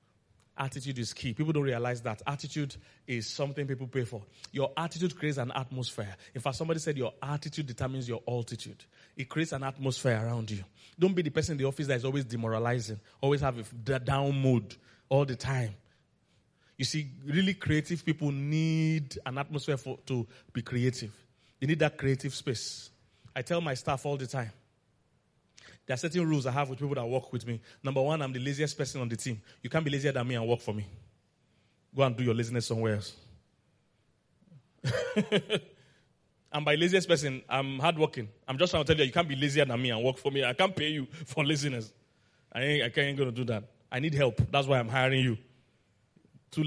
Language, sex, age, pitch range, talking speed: English, male, 30-49, 120-145 Hz, 200 wpm